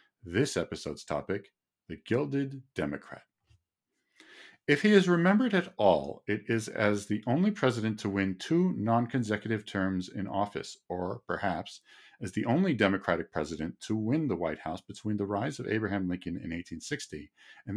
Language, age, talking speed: English, 50-69, 155 wpm